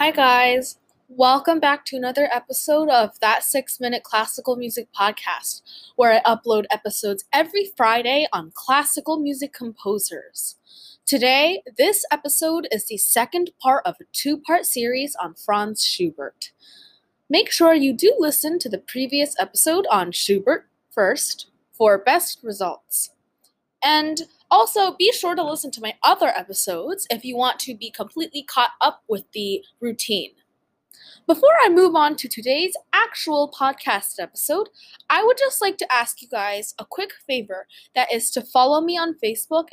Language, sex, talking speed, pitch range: English, female, 155 wpm, 225-320 Hz